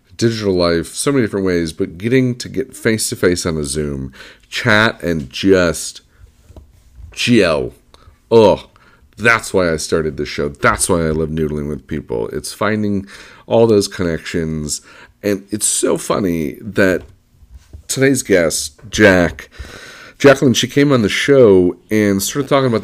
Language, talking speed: English, 150 wpm